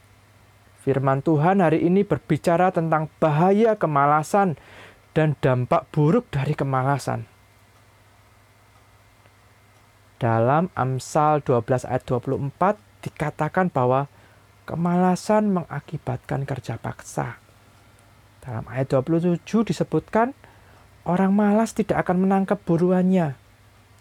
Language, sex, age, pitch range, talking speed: Indonesian, male, 20-39, 115-195 Hz, 85 wpm